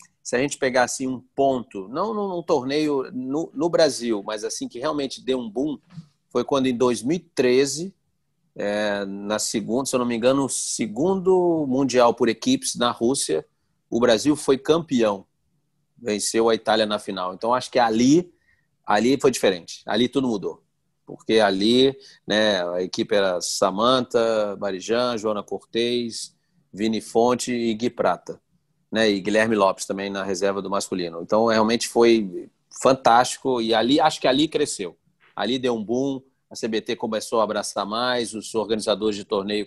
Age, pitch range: 40-59, 105-135 Hz